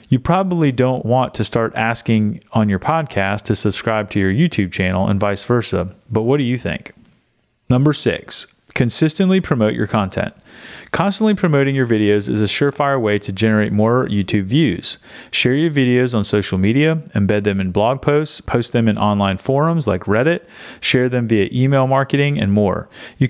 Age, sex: 30-49, male